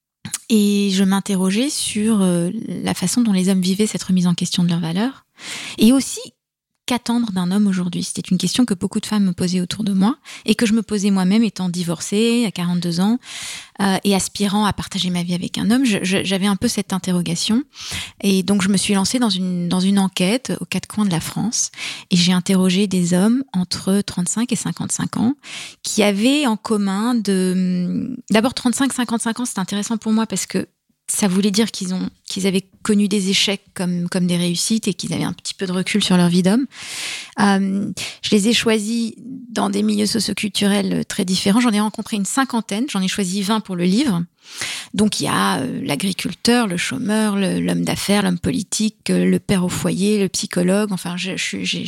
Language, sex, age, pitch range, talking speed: French, female, 20-39, 185-220 Hz, 200 wpm